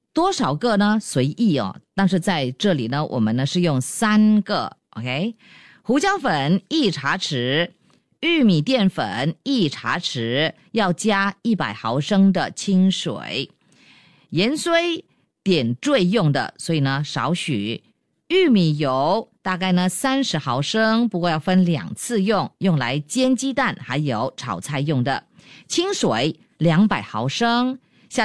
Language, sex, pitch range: Chinese, female, 160-235 Hz